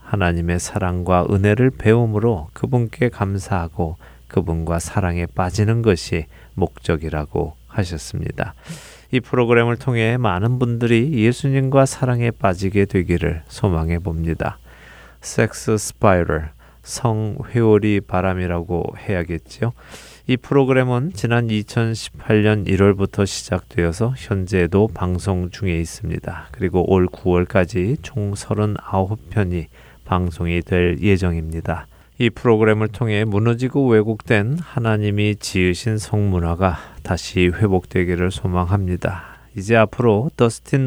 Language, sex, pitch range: Korean, male, 90-115 Hz